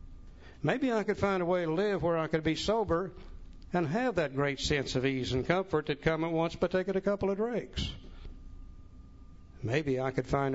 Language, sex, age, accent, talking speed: English, male, 60-79, American, 205 wpm